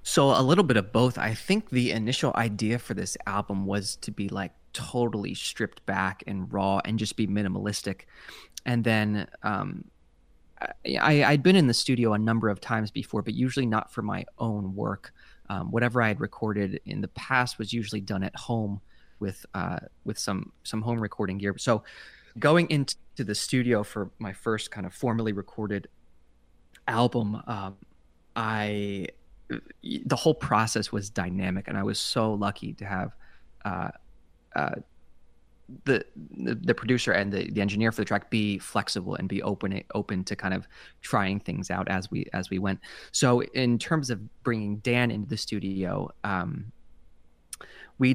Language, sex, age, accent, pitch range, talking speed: English, male, 20-39, American, 95-120 Hz, 170 wpm